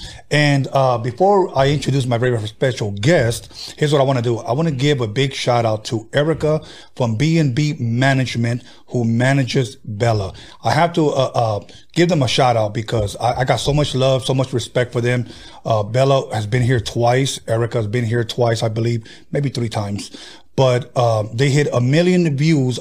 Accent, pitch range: American, 120-140 Hz